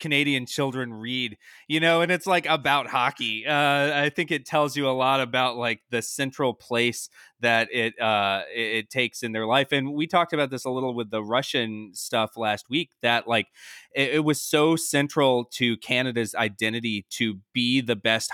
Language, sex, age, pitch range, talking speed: English, male, 20-39, 110-130 Hz, 190 wpm